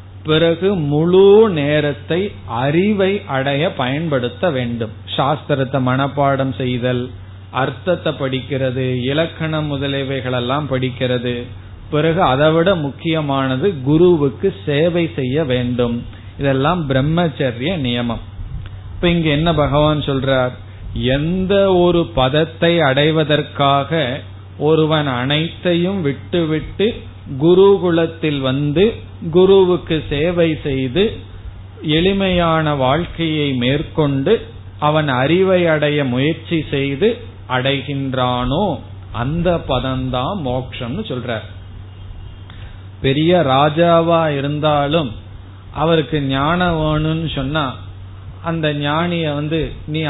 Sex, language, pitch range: male, Tamil, 125-160 Hz